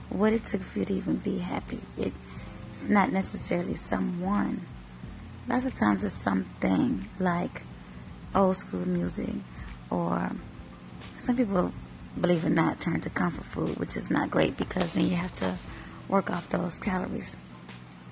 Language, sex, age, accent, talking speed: English, female, 30-49, American, 150 wpm